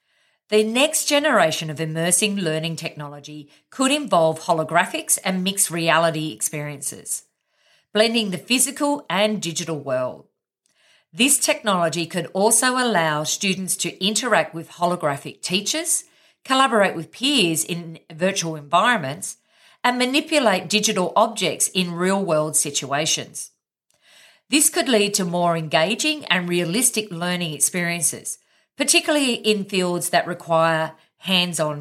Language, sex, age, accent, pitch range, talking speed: English, female, 50-69, Australian, 160-230 Hz, 115 wpm